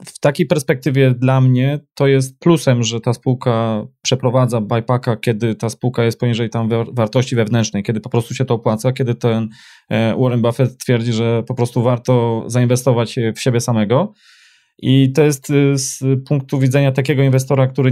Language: Polish